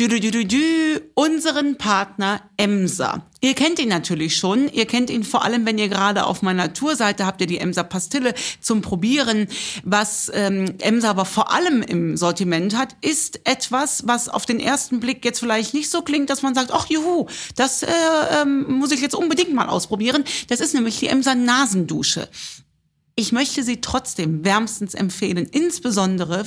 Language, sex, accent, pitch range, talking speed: German, female, German, 190-265 Hz, 180 wpm